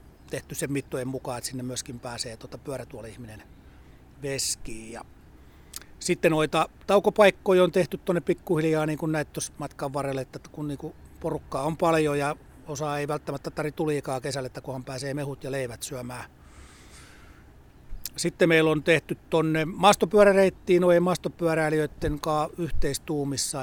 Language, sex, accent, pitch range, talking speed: Finnish, male, native, 130-155 Hz, 135 wpm